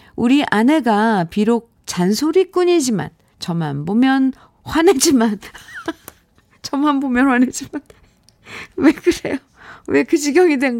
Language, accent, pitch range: Korean, native, 190-270 Hz